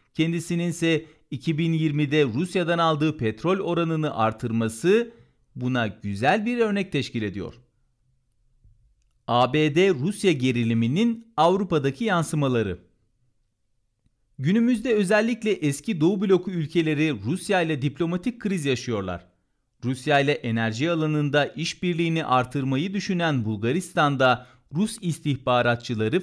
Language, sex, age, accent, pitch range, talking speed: Turkish, male, 40-59, native, 120-170 Hz, 90 wpm